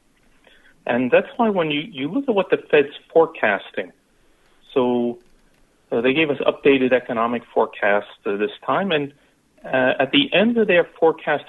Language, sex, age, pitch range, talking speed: English, male, 40-59, 120-170 Hz, 160 wpm